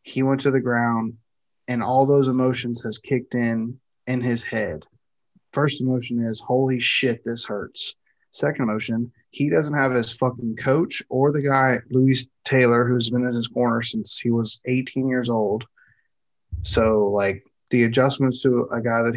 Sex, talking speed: male, 170 wpm